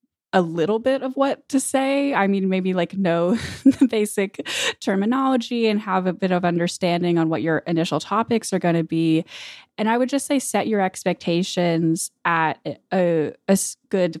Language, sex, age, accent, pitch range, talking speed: English, female, 10-29, American, 165-210 Hz, 175 wpm